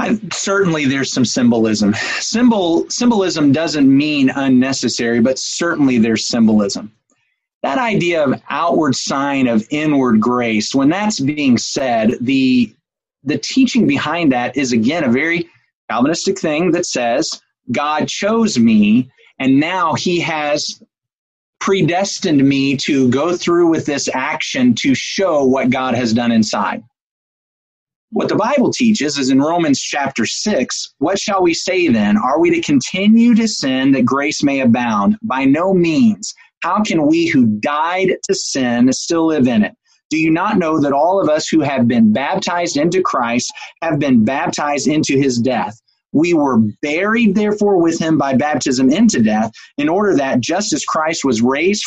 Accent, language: American, English